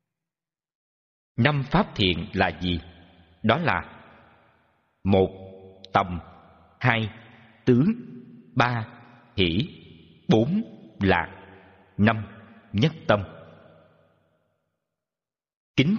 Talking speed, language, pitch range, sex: 70 wpm, Vietnamese, 85-135 Hz, male